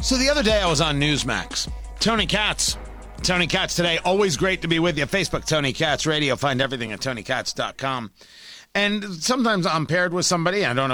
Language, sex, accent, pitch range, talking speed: English, male, American, 160-245 Hz, 190 wpm